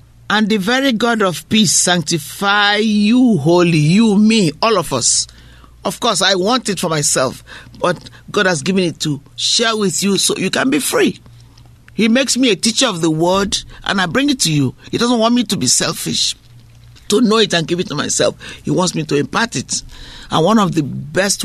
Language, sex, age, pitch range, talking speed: English, male, 50-69, 145-230 Hz, 210 wpm